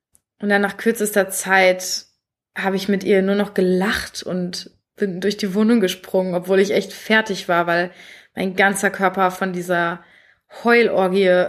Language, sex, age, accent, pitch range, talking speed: German, female, 20-39, German, 185-205 Hz, 155 wpm